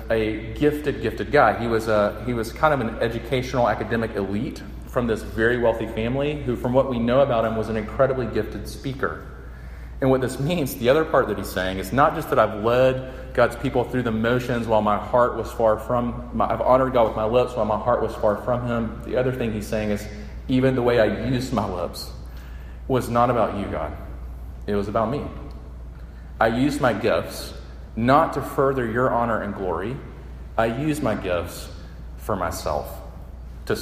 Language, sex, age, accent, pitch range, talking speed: English, male, 30-49, American, 90-120 Hz, 195 wpm